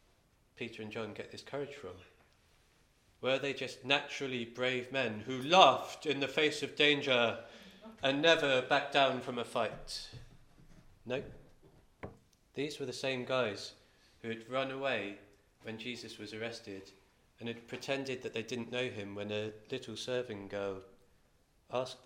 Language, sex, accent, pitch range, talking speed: English, male, British, 105-130 Hz, 150 wpm